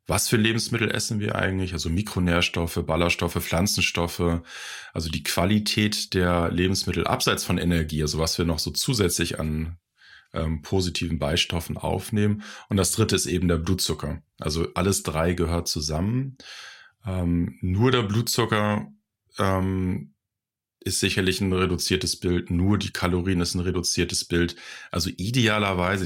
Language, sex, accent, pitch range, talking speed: German, male, German, 85-95 Hz, 140 wpm